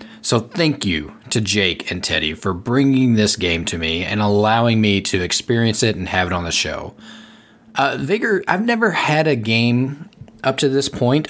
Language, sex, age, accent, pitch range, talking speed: English, male, 30-49, American, 95-130 Hz, 190 wpm